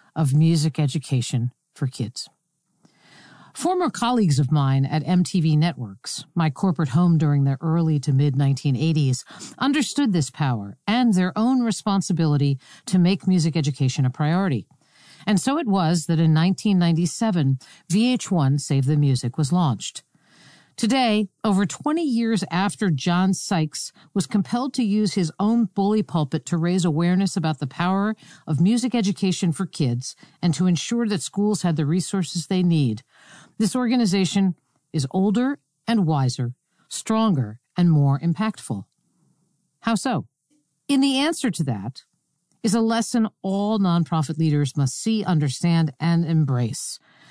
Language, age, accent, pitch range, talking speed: English, 50-69, American, 150-210 Hz, 140 wpm